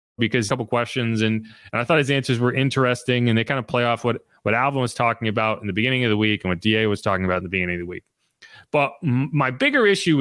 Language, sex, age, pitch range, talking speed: English, male, 30-49, 120-190 Hz, 270 wpm